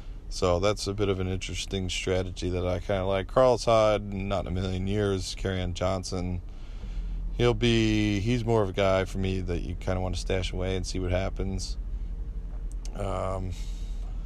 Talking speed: 185 wpm